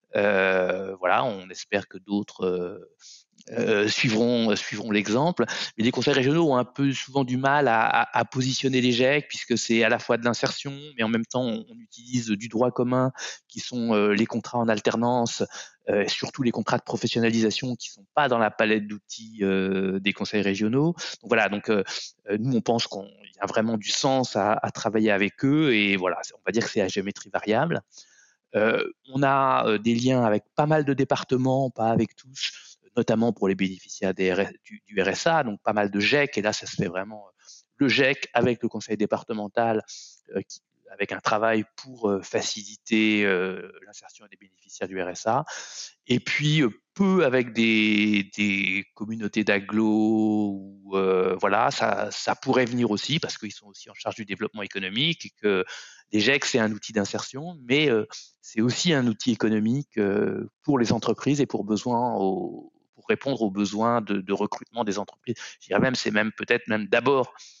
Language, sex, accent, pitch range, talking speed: French, male, French, 105-130 Hz, 190 wpm